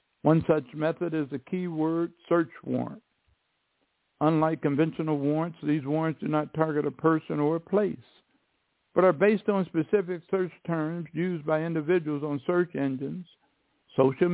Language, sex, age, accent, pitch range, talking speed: English, male, 60-79, American, 150-180 Hz, 145 wpm